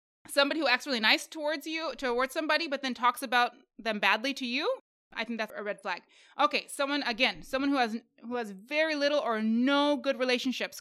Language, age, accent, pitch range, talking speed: English, 20-39, American, 230-275 Hz, 205 wpm